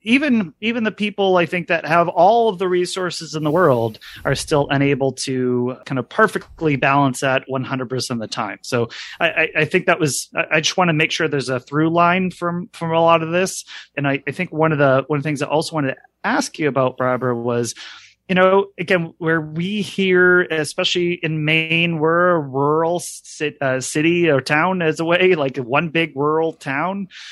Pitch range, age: 135-180 Hz, 30-49